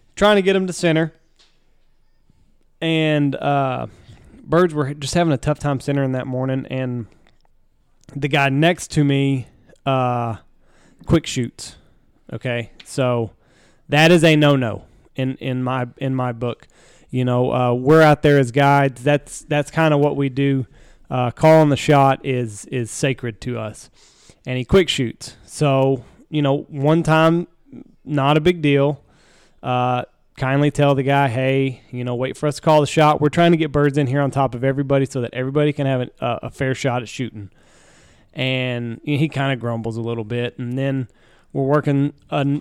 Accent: American